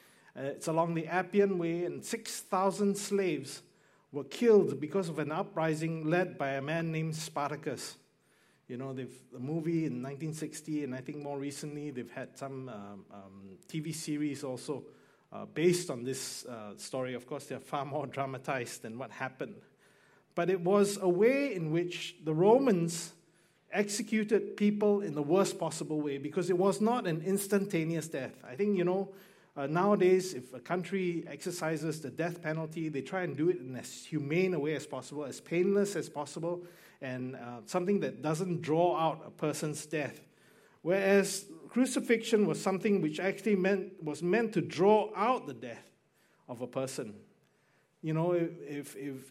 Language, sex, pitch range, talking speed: English, male, 145-190 Hz, 170 wpm